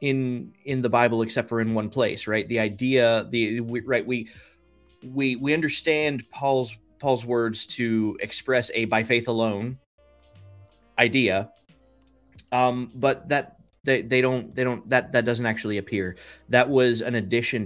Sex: male